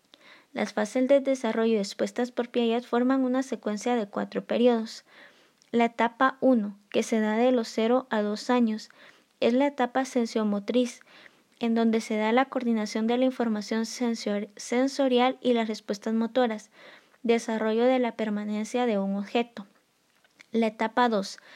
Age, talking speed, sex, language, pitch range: 20-39, 150 wpm, female, Spanish, 215-245 Hz